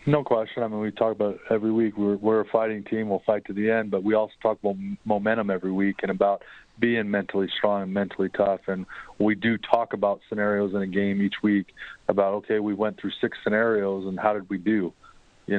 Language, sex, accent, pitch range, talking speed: English, male, American, 95-105 Hz, 230 wpm